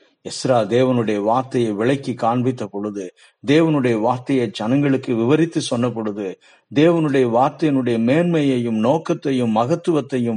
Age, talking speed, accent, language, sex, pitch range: 50-69, 95 wpm, native, Tamil, male, 120-165 Hz